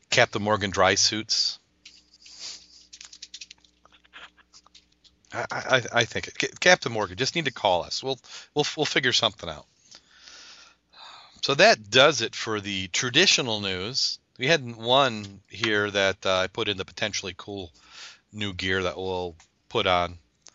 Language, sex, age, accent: English, male, 40-59, American